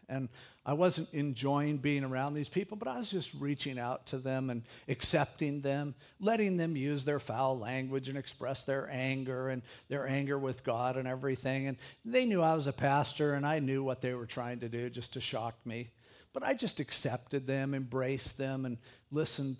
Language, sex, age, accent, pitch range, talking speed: English, male, 50-69, American, 130-170 Hz, 200 wpm